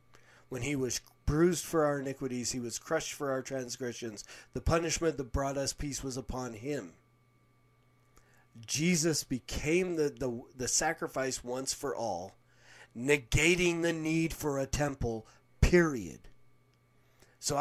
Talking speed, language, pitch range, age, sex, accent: 135 wpm, English, 120-155 Hz, 40-59, male, American